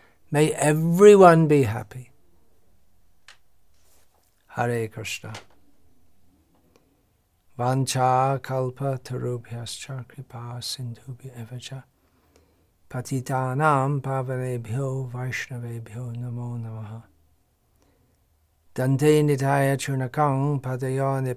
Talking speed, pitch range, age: 60 wpm, 110-130 Hz, 60-79